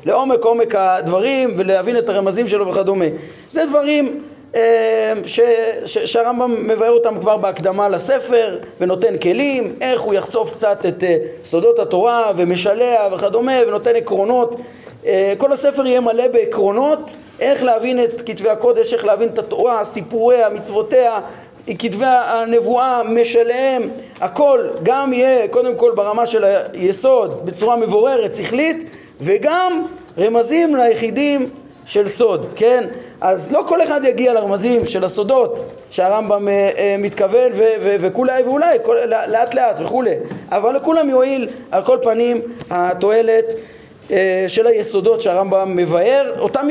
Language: Hebrew